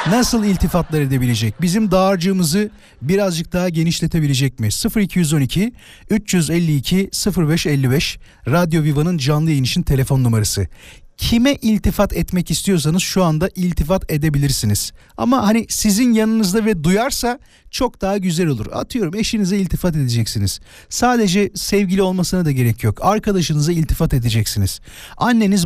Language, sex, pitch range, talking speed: Turkish, male, 140-205 Hz, 120 wpm